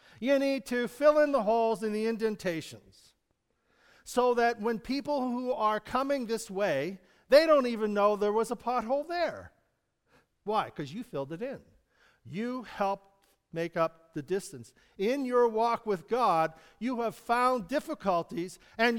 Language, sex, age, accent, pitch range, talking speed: English, male, 50-69, American, 180-240 Hz, 160 wpm